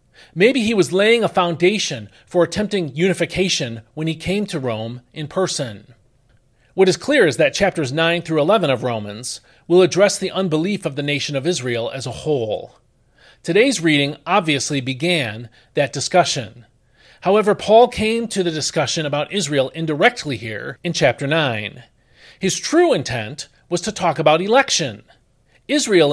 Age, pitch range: 40-59, 130-190 Hz